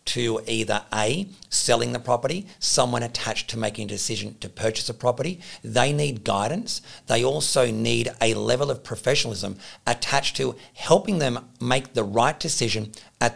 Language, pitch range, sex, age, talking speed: English, 110-135 Hz, male, 50-69, 155 wpm